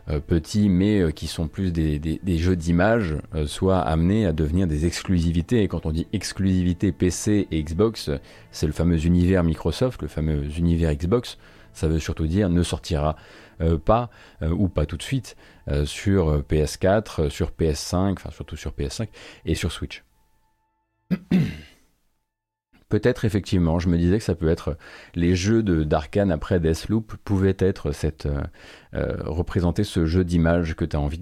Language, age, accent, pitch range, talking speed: French, 30-49, French, 80-105 Hz, 175 wpm